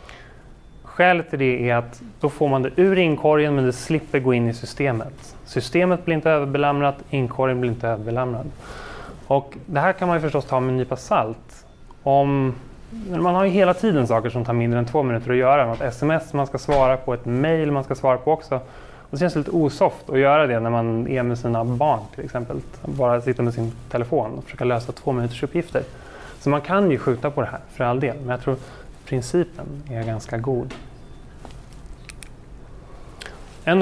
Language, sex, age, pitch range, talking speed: Swedish, male, 20-39, 120-150 Hz, 200 wpm